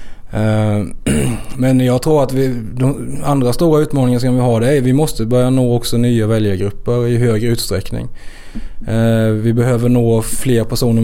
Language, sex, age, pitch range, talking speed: English, male, 20-39, 110-125 Hz, 165 wpm